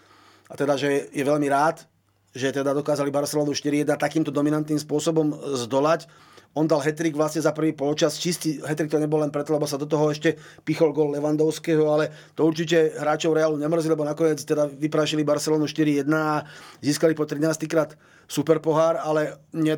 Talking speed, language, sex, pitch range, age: 170 wpm, Slovak, male, 150-160 Hz, 30-49